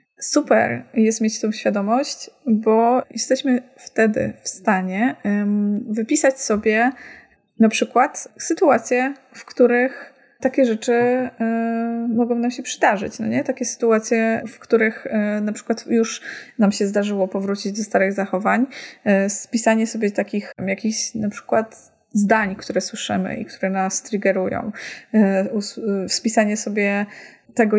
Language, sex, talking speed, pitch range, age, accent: Polish, female, 120 wpm, 195-235 Hz, 20-39, native